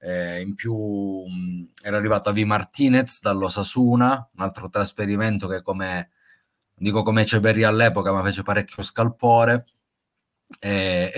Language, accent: Italian, native